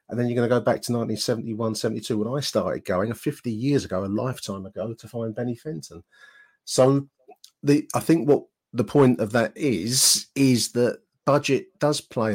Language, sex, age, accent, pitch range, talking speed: English, male, 40-59, British, 105-135 Hz, 185 wpm